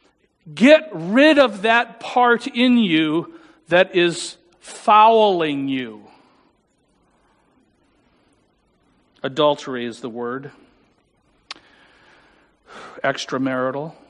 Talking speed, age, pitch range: 70 wpm, 50-69, 135-215 Hz